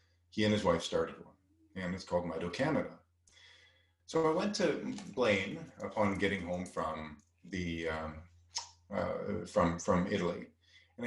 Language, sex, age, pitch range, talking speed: English, male, 30-49, 85-105 Hz, 140 wpm